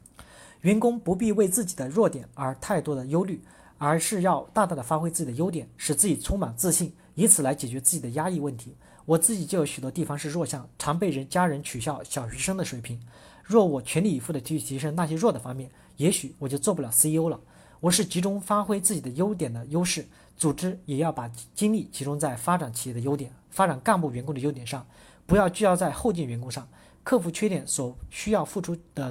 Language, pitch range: Chinese, 140-190 Hz